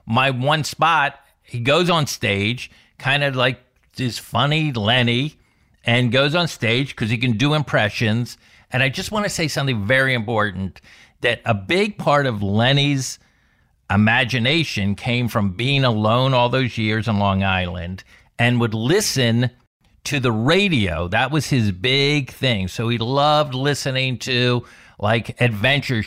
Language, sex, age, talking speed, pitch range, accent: English, male, 50-69, 150 wpm, 115-145 Hz, American